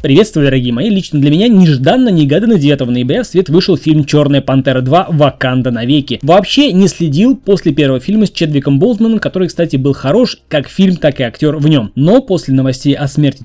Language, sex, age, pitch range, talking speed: Russian, male, 20-39, 135-195 Hz, 190 wpm